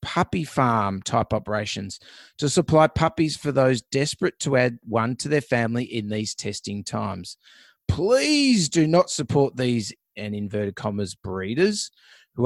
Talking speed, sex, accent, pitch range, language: 145 wpm, male, Australian, 110-150 Hz, English